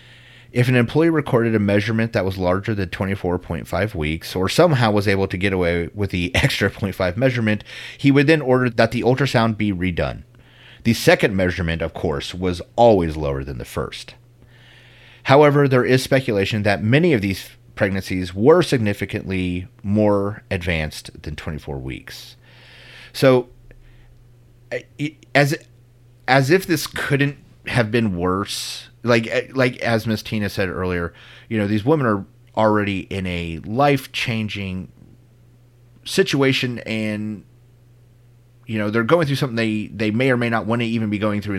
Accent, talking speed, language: American, 150 wpm, English